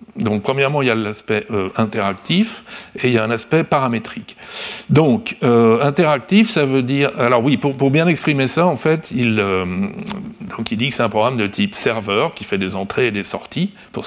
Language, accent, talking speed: French, French, 215 wpm